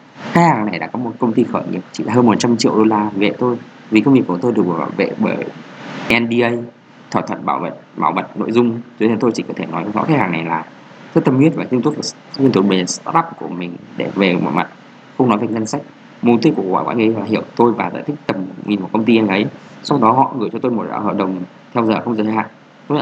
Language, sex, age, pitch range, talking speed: Vietnamese, male, 20-39, 105-125 Hz, 265 wpm